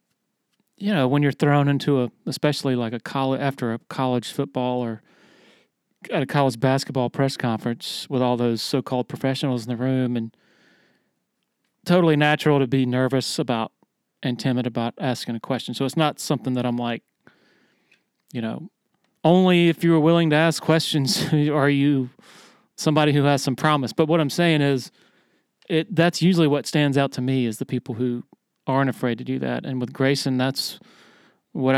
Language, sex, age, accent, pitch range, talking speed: English, male, 40-59, American, 130-160 Hz, 180 wpm